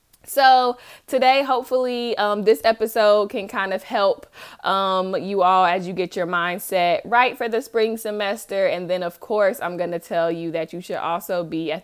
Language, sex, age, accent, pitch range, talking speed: English, female, 20-39, American, 175-215 Hz, 195 wpm